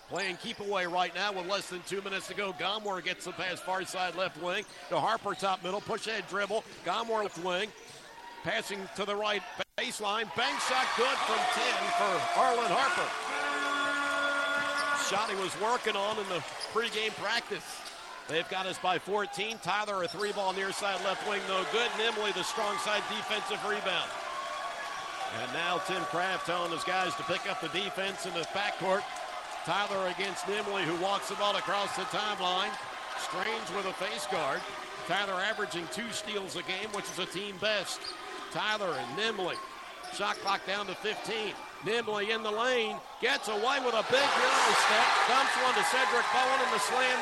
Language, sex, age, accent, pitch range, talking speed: English, male, 50-69, American, 190-225 Hz, 180 wpm